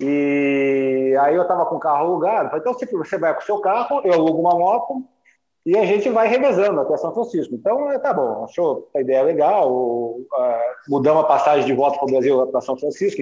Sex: male